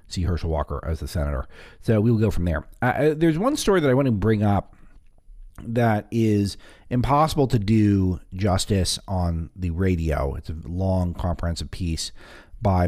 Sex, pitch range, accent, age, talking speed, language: male, 90-125 Hz, American, 40-59, 170 wpm, English